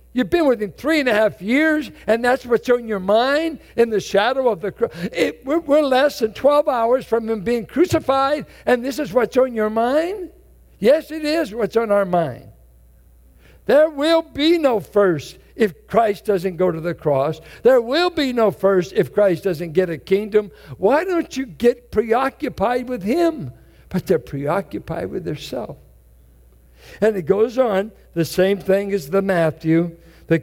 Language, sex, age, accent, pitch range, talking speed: English, male, 60-79, American, 160-245 Hz, 180 wpm